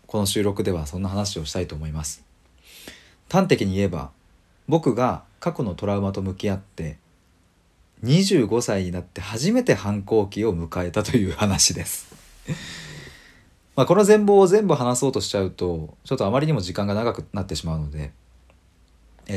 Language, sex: Japanese, male